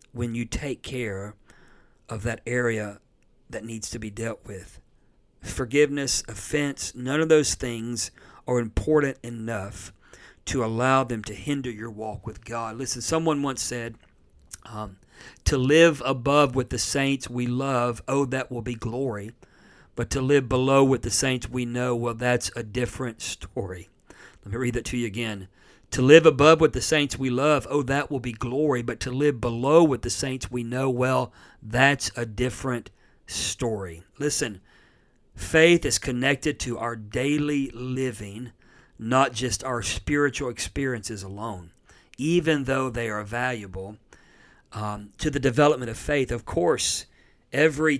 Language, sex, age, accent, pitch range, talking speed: English, male, 50-69, American, 110-135 Hz, 155 wpm